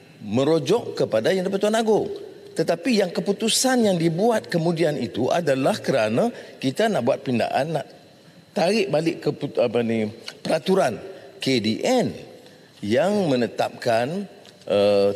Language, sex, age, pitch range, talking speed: English, male, 50-69, 135-225 Hz, 110 wpm